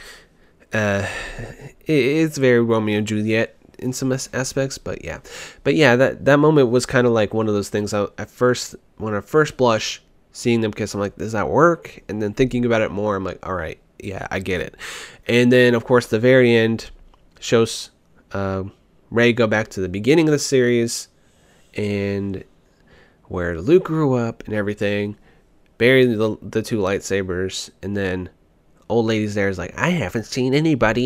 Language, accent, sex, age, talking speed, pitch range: English, American, male, 20-39, 180 wpm, 95-125 Hz